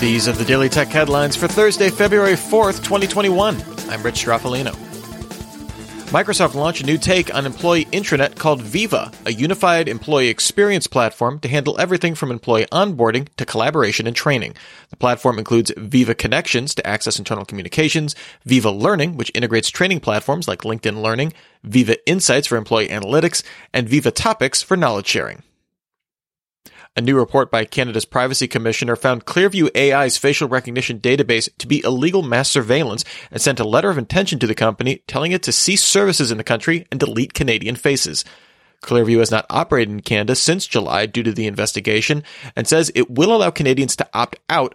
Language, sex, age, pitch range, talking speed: English, male, 30-49, 115-155 Hz, 170 wpm